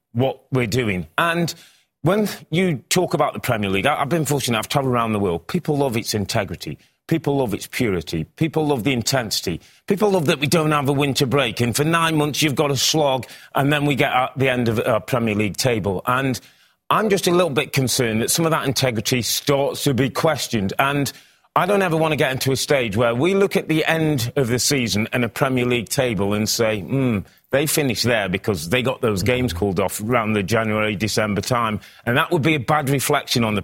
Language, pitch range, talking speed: English, 110-145 Hz, 225 wpm